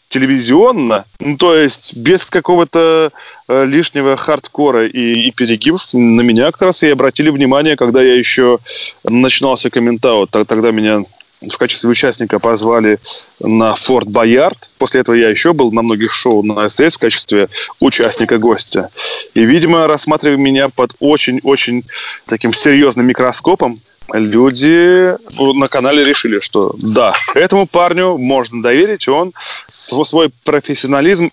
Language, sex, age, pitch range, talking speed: Russian, male, 20-39, 115-145 Hz, 130 wpm